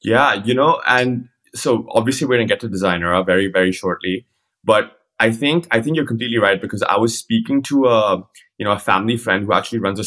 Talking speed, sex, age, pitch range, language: 225 wpm, male, 20-39, 95-115 Hz, English